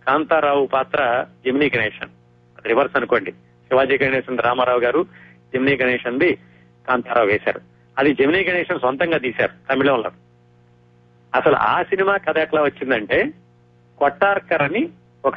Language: Telugu